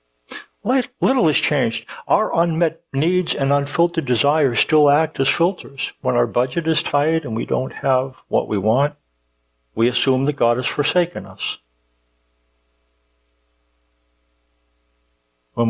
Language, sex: English, male